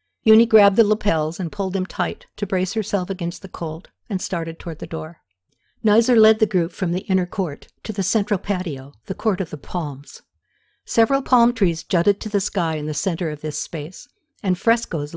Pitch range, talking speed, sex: 160-210 Hz, 200 wpm, female